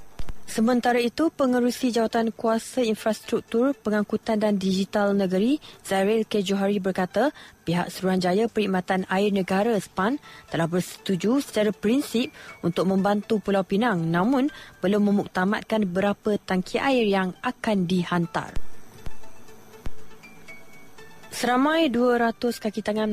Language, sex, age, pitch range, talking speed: Malay, female, 20-39, 190-235 Hz, 105 wpm